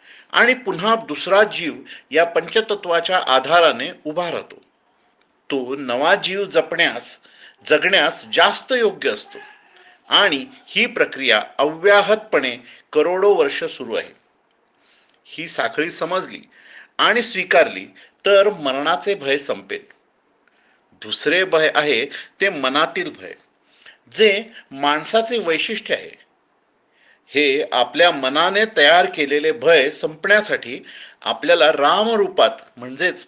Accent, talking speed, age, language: native, 95 wpm, 40-59, Marathi